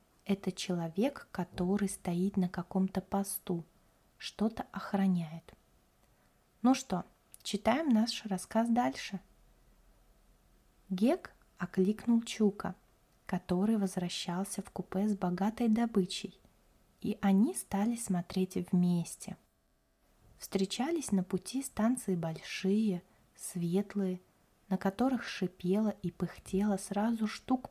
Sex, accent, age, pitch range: female, native, 20-39, 180-210 Hz